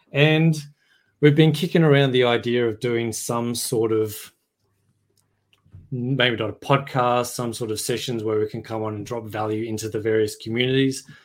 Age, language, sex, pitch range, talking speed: 20-39, English, male, 105-125 Hz, 170 wpm